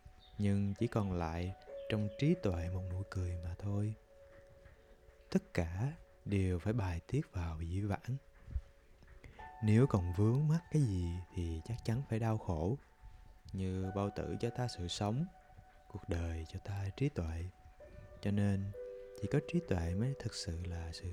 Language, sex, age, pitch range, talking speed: Vietnamese, male, 20-39, 90-120 Hz, 160 wpm